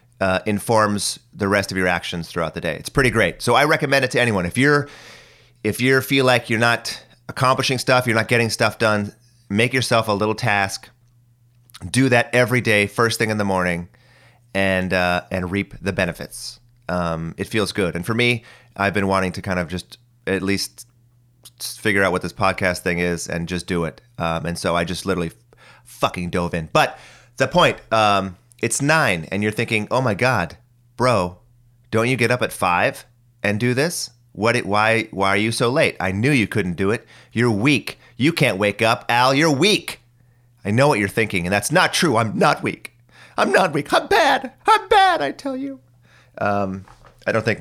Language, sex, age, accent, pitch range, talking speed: English, male, 30-49, American, 100-125 Hz, 205 wpm